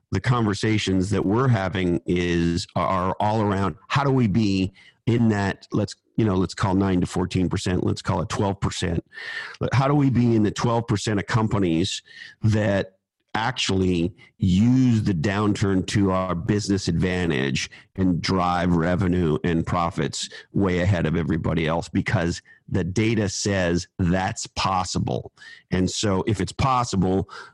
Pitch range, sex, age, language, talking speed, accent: 90-110 Hz, male, 50-69, English, 155 wpm, American